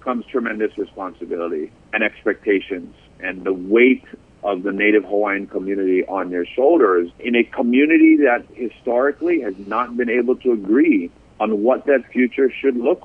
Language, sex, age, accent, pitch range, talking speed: English, male, 50-69, American, 105-140 Hz, 150 wpm